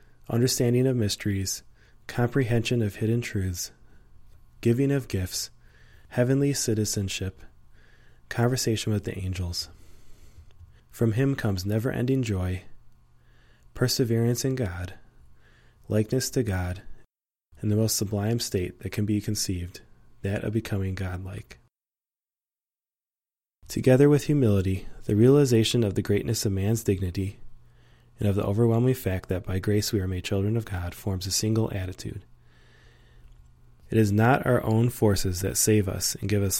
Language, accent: English, American